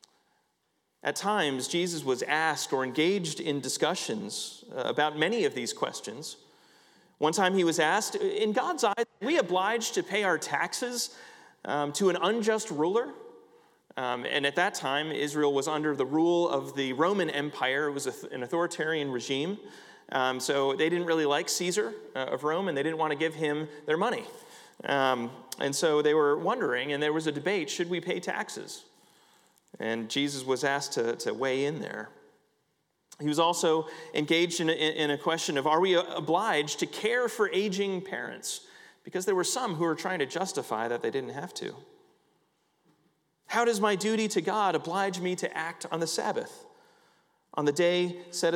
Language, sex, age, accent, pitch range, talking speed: English, male, 30-49, American, 150-220 Hz, 170 wpm